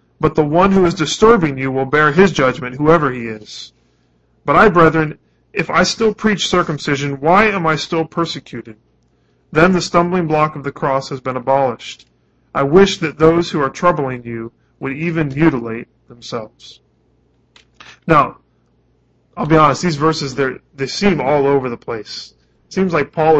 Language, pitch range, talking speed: English, 135-170 Hz, 165 wpm